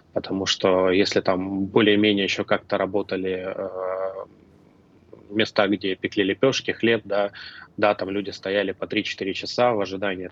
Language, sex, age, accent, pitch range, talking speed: Russian, male, 20-39, native, 95-110 Hz, 140 wpm